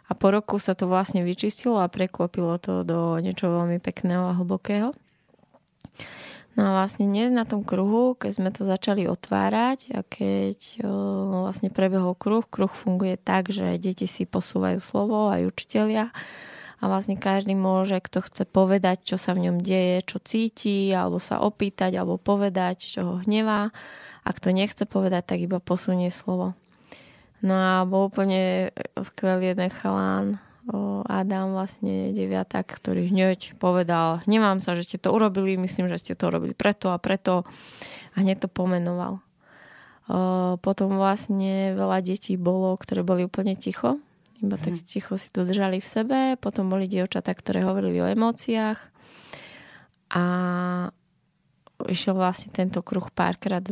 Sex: female